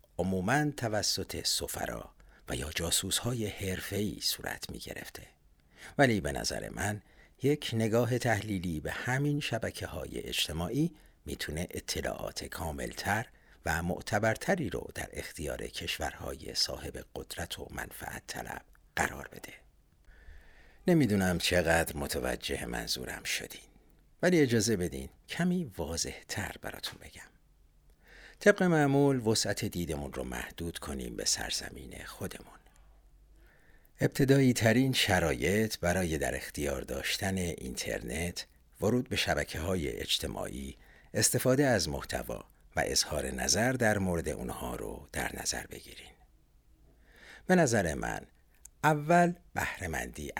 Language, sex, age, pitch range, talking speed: Persian, male, 60-79, 80-125 Hz, 110 wpm